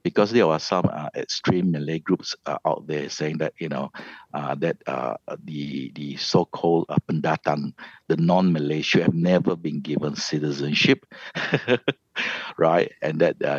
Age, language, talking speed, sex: 60-79, English, 155 wpm, male